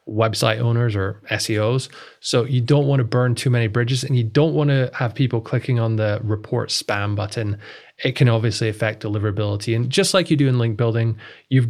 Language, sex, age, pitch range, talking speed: English, male, 20-39, 110-135 Hz, 205 wpm